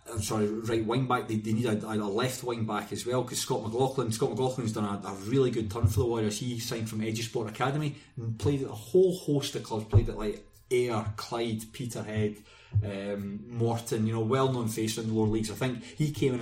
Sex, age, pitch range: male, 30-49, 105-115 Hz